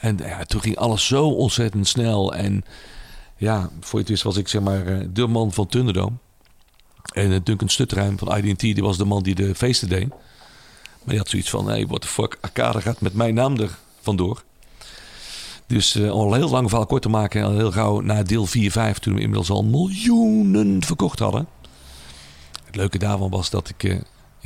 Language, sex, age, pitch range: Dutch, male, 50-69, 95-115 Hz